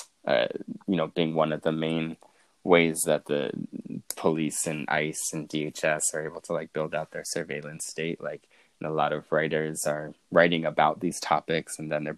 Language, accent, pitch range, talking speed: English, American, 75-80 Hz, 190 wpm